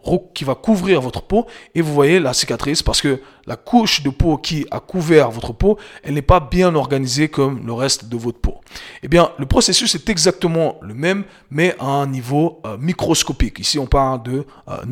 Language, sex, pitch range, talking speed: French, male, 135-180 Hz, 205 wpm